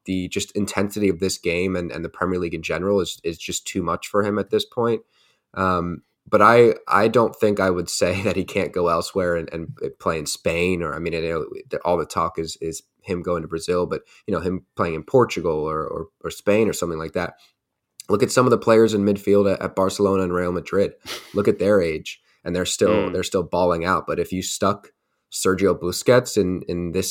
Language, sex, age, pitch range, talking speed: English, male, 20-39, 90-105 Hz, 230 wpm